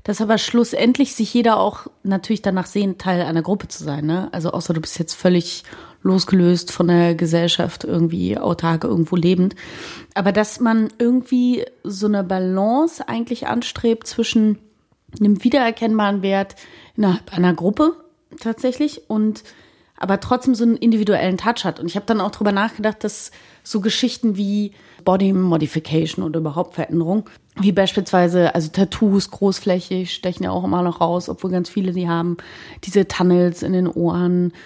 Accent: German